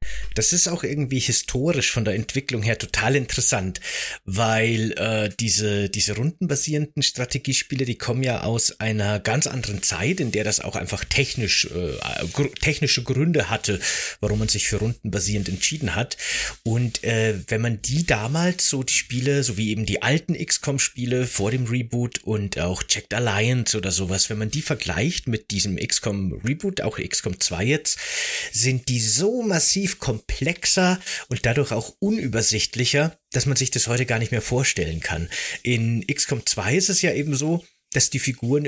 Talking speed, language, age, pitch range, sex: 170 wpm, German, 30-49, 105-140 Hz, male